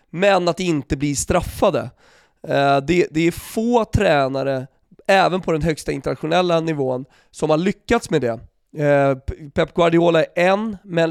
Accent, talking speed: native, 135 wpm